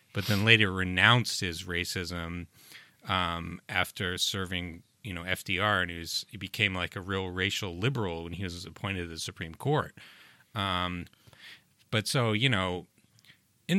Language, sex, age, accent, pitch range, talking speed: English, male, 30-49, American, 95-125 Hz, 155 wpm